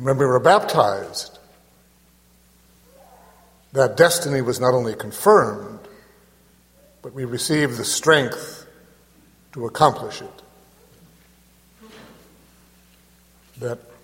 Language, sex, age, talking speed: English, male, 60-79, 80 wpm